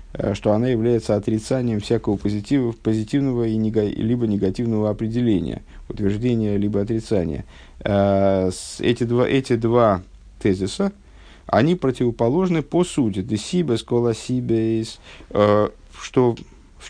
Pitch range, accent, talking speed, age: 100-125 Hz, native, 105 wpm, 50-69